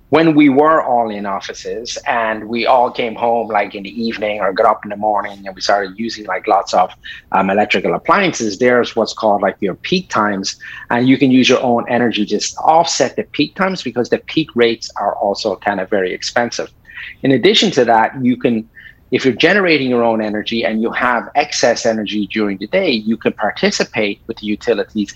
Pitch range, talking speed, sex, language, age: 110-130 Hz, 205 wpm, male, English, 30-49